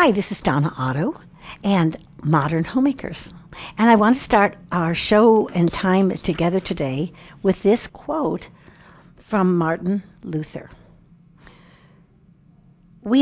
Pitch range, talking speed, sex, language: 165-220 Hz, 120 wpm, female, English